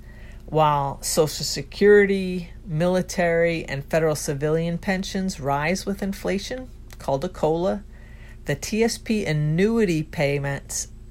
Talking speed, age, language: 95 wpm, 50-69, English